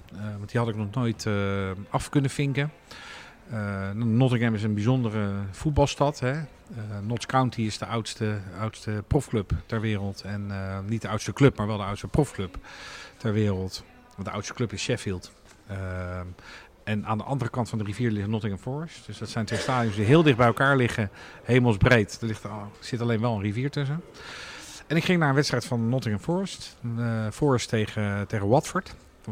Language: Dutch